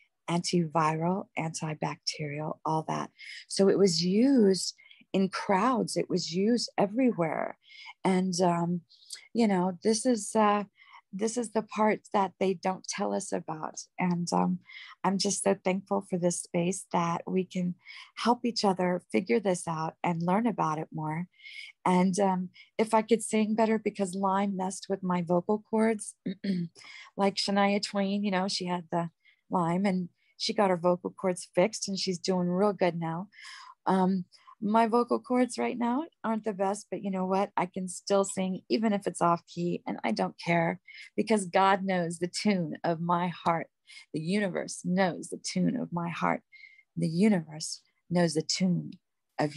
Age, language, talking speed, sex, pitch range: 40-59, English, 165 wpm, female, 175-220 Hz